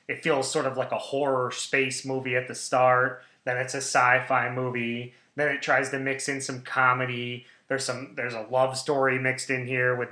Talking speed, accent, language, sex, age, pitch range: 210 wpm, American, English, male, 20-39, 125-150 Hz